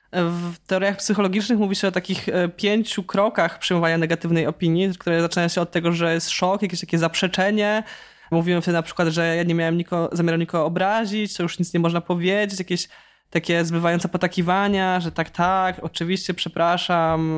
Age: 20-39